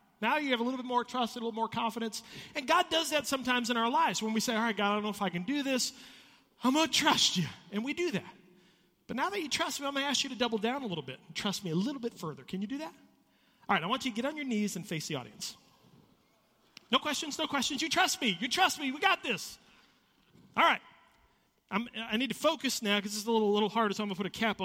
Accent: American